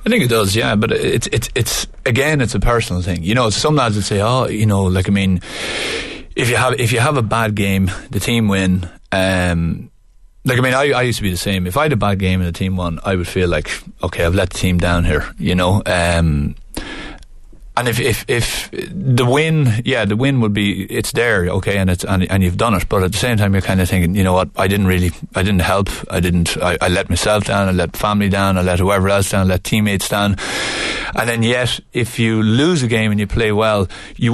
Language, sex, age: English, male, 30-49